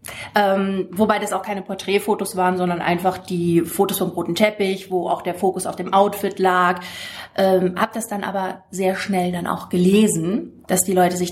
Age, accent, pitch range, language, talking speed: 30-49, German, 190-230 Hz, German, 195 wpm